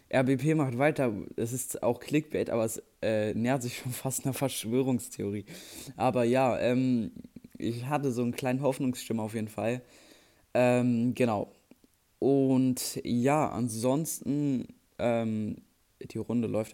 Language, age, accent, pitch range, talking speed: German, 20-39, German, 115-140 Hz, 135 wpm